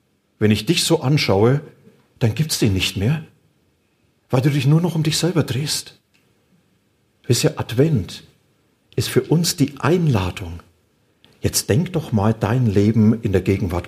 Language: German